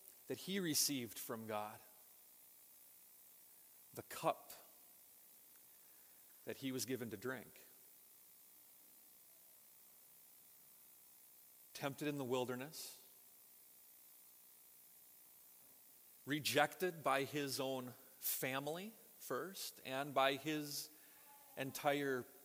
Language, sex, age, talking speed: English, male, 40-59, 70 wpm